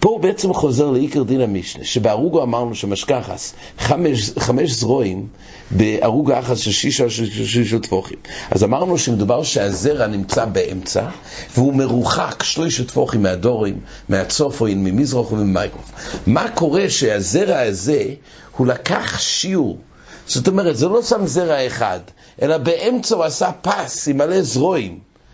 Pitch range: 105-155 Hz